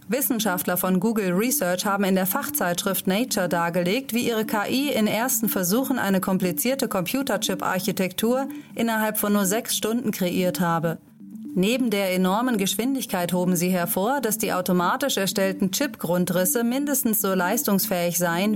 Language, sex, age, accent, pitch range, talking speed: German, female, 30-49, German, 185-235 Hz, 135 wpm